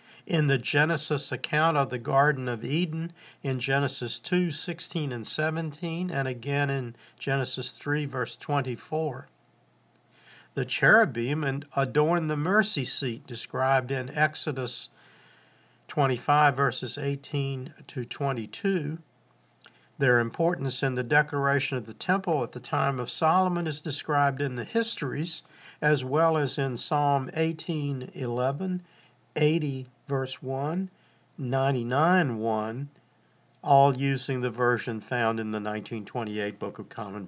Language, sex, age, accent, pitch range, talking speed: English, male, 50-69, American, 125-160 Hz, 125 wpm